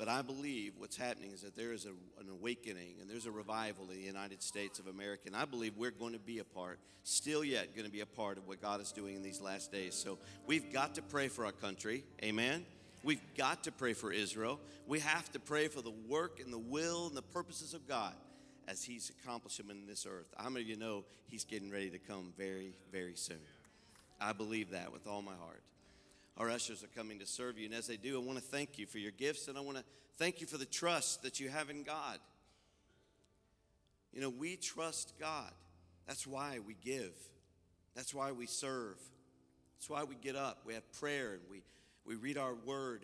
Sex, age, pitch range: male, 50-69, 100-135 Hz